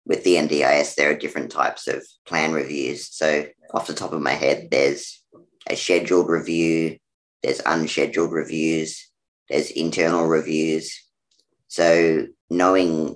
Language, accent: English, Australian